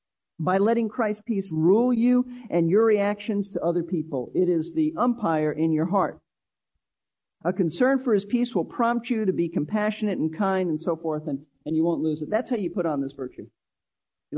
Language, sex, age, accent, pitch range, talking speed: English, male, 40-59, American, 155-220 Hz, 205 wpm